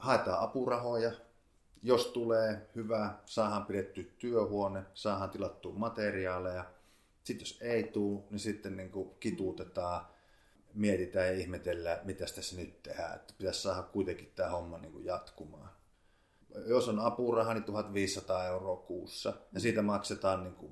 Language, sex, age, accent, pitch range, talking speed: Finnish, male, 30-49, native, 95-110 Hz, 120 wpm